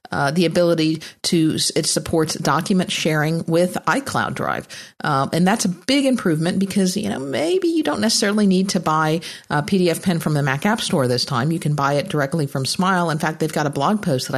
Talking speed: 215 wpm